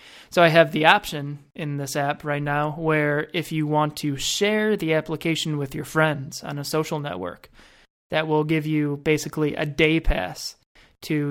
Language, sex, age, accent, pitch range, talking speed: English, male, 20-39, American, 145-165 Hz, 180 wpm